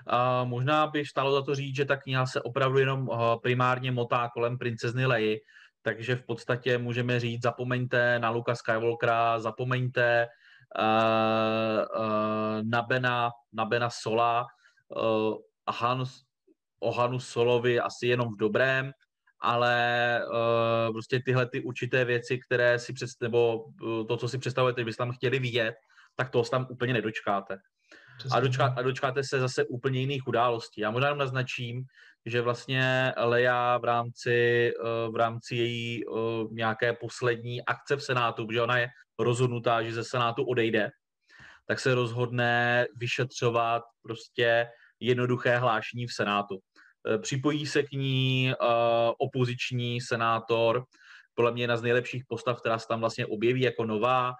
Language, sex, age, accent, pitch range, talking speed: Czech, male, 20-39, native, 115-125 Hz, 140 wpm